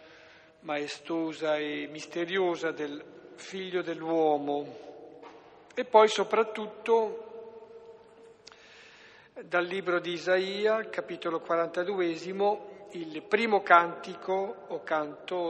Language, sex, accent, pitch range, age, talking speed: Italian, male, native, 155-195 Hz, 50-69, 75 wpm